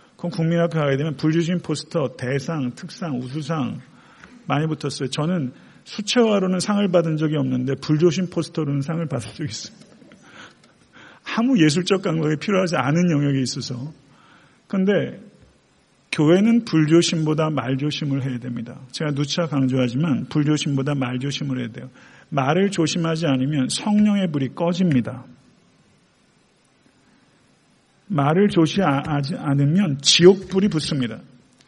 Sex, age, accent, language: male, 40-59, native, Korean